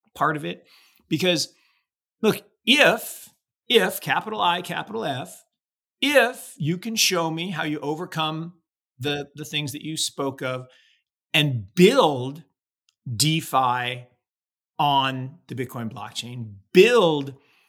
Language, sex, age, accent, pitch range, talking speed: English, male, 40-59, American, 130-170 Hz, 115 wpm